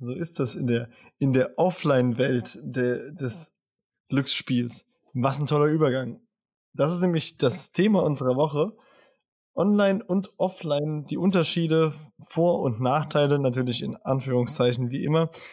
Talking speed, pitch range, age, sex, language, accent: 130 wpm, 130-170 Hz, 20-39, male, German, German